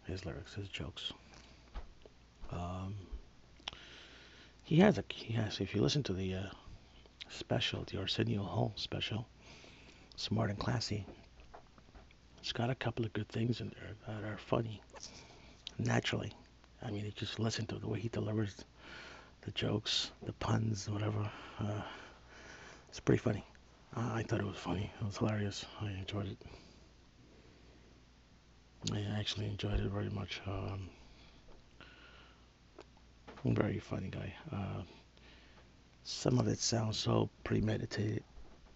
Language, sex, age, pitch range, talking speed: English, male, 50-69, 80-110 Hz, 135 wpm